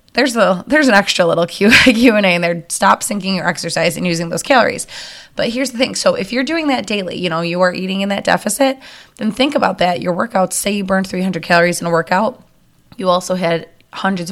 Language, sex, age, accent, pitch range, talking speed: English, female, 20-39, American, 180-220 Hz, 225 wpm